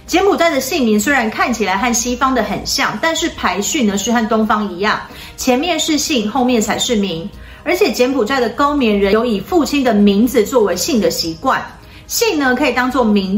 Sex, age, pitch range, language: female, 40-59, 200-270 Hz, Chinese